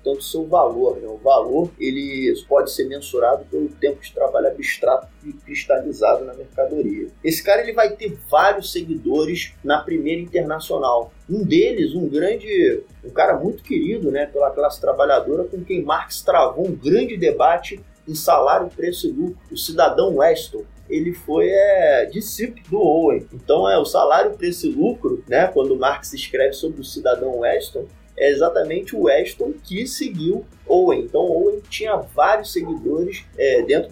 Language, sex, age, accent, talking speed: Portuguese, male, 20-39, Brazilian, 165 wpm